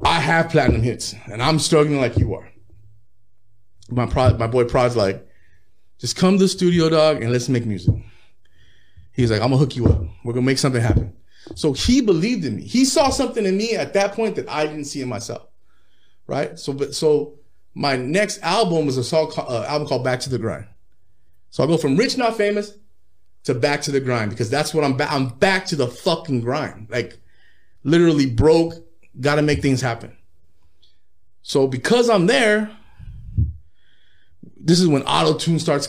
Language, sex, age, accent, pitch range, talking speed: English, male, 30-49, American, 110-155 Hz, 195 wpm